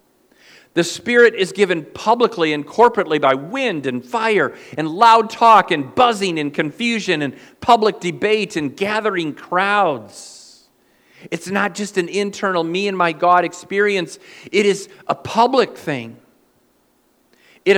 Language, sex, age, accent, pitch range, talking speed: English, male, 50-69, American, 145-220 Hz, 135 wpm